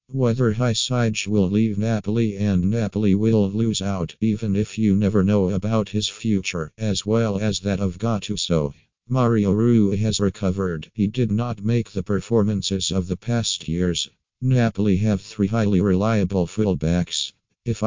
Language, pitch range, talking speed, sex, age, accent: Italian, 95-110 Hz, 150 wpm, male, 50-69, American